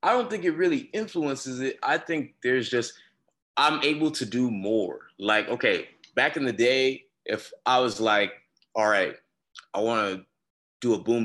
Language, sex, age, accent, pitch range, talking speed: English, male, 20-39, American, 105-130 Hz, 175 wpm